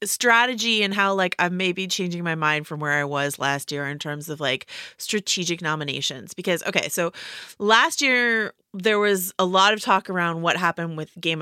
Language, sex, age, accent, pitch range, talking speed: English, female, 30-49, American, 150-190 Hz, 200 wpm